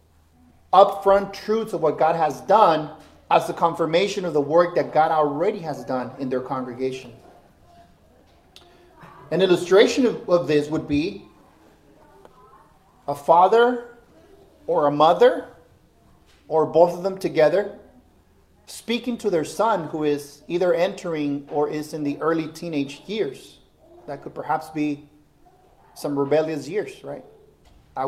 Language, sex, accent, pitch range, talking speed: English, male, American, 145-195 Hz, 130 wpm